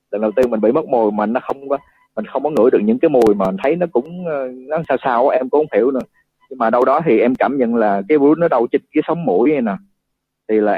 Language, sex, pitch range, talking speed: Vietnamese, male, 100-135 Hz, 295 wpm